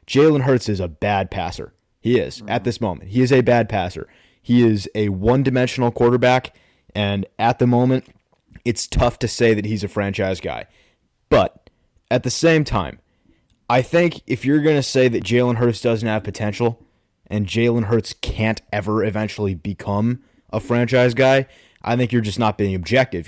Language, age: English, 20-39